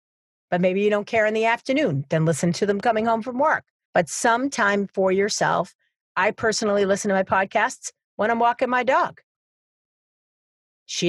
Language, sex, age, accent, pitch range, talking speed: English, female, 40-59, American, 180-225 Hz, 180 wpm